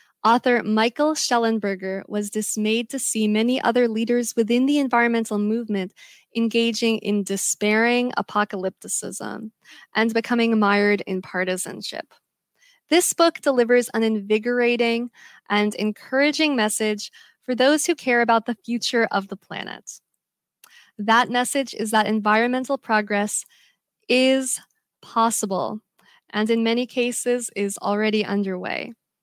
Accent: American